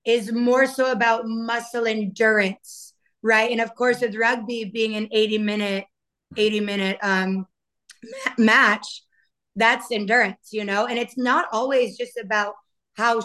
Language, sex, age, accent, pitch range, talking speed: English, female, 20-39, American, 220-250 Hz, 140 wpm